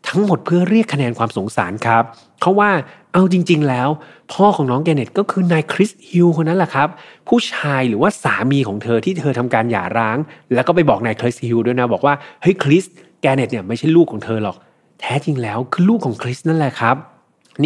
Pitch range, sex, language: 115-160 Hz, male, Thai